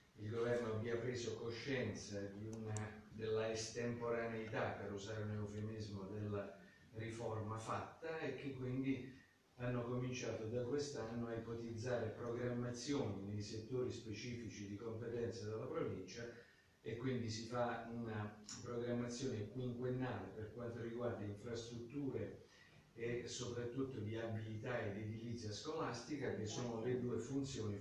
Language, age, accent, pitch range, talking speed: Italian, 40-59, native, 110-130 Hz, 120 wpm